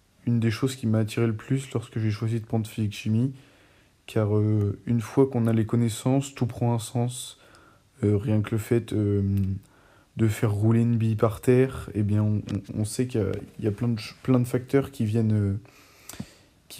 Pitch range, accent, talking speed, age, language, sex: 110-125 Hz, French, 190 wpm, 20-39, French, male